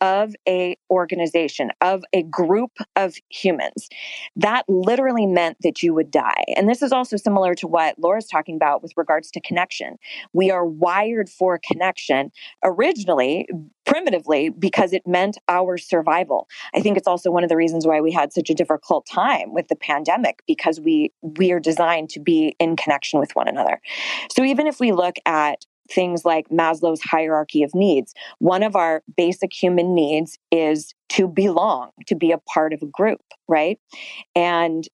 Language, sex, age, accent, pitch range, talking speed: English, female, 20-39, American, 165-195 Hz, 175 wpm